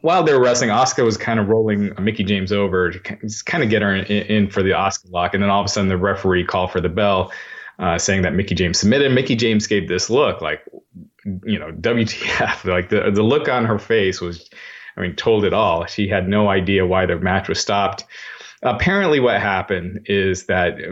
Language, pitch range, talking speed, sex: English, 90-110 Hz, 220 wpm, male